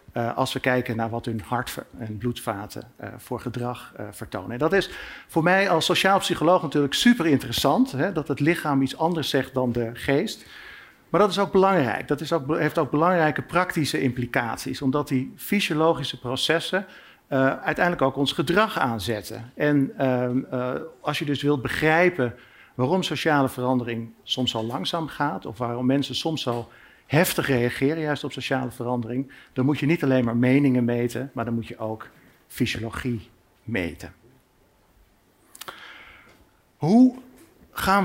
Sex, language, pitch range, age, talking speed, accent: male, Dutch, 120-160 Hz, 50-69, 160 wpm, Dutch